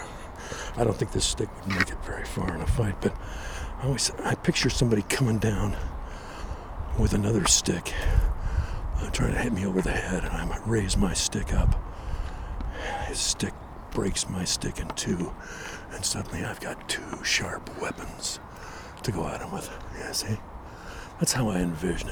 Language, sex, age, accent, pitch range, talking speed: English, male, 60-79, American, 80-110 Hz, 170 wpm